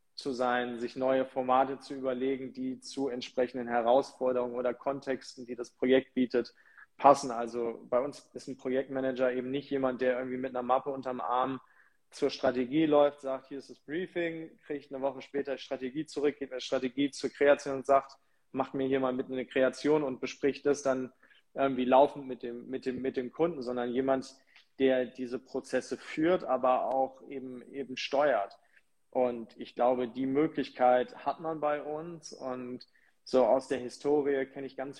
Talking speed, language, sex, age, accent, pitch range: 170 wpm, German, male, 20-39, German, 125-135 Hz